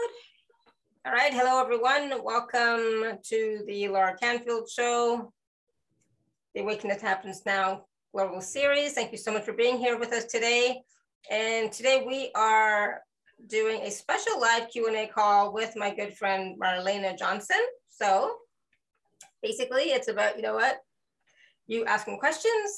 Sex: female